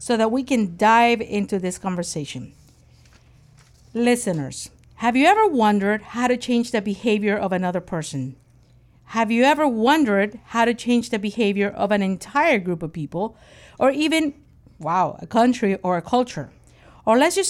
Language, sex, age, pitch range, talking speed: English, female, 50-69, 190-250 Hz, 160 wpm